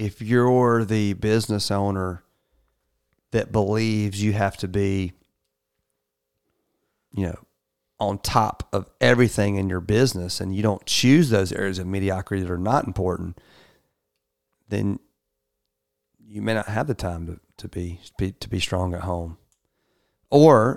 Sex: male